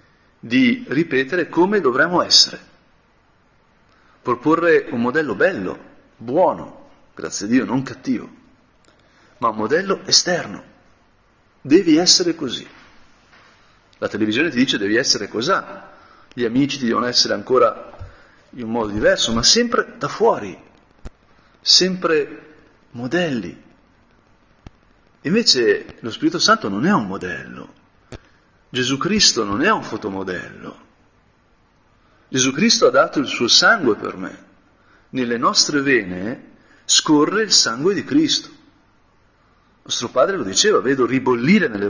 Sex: male